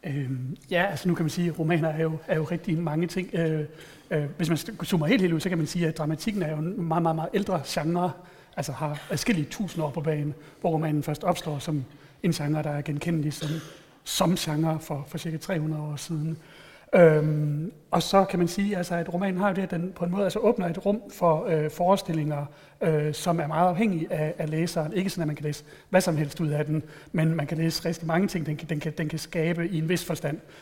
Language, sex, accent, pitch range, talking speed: Danish, male, native, 155-175 Hz, 245 wpm